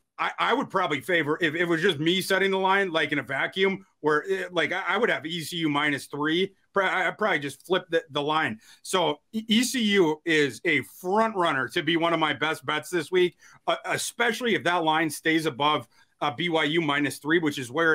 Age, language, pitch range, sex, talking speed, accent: 30-49, English, 150-180 Hz, male, 200 wpm, American